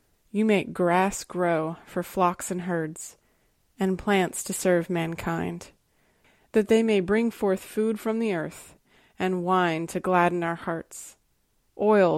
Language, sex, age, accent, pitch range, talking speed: English, female, 20-39, American, 175-195 Hz, 145 wpm